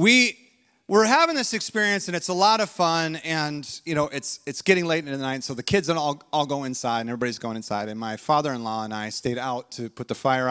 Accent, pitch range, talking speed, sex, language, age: American, 140-200 Hz, 255 wpm, male, English, 30-49